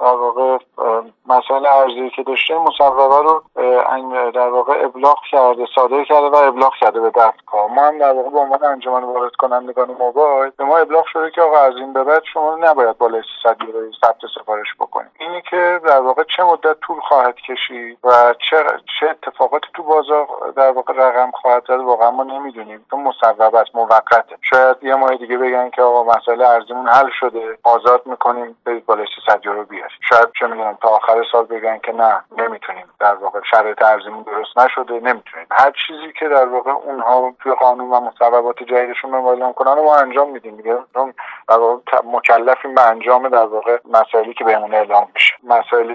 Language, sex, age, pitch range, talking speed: Persian, male, 50-69, 115-135 Hz, 180 wpm